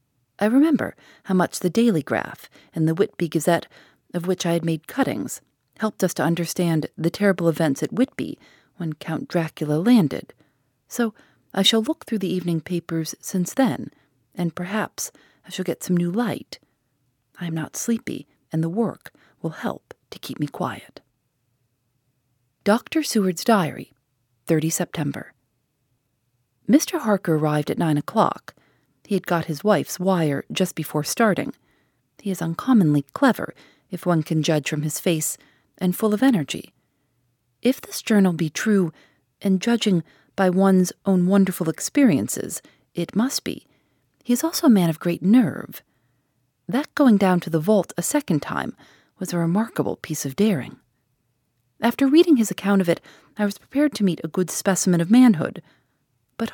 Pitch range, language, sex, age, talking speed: 150-210 Hz, English, female, 40-59, 160 wpm